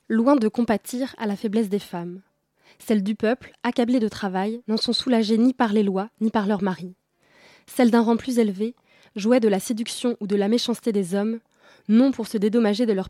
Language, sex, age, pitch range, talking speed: French, female, 20-39, 195-235 Hz, 210 wpm